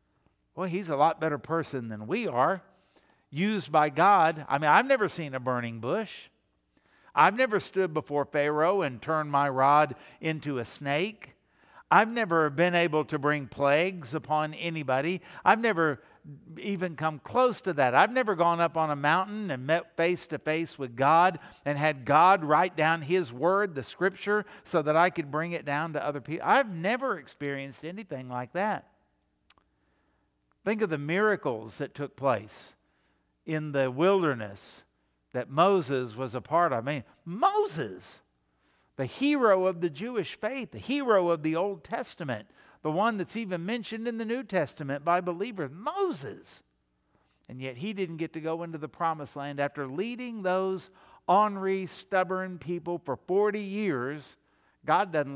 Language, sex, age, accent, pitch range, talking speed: English, male, 50-69, American, 140-185 Hz, 165 wpm